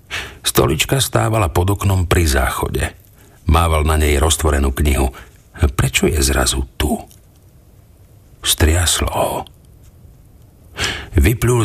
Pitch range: 80-100 Hz